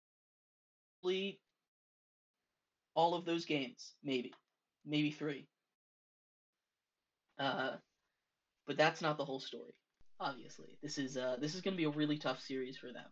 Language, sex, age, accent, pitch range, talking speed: English, male, 20-39, American, 125-140 Hz, 135 wpm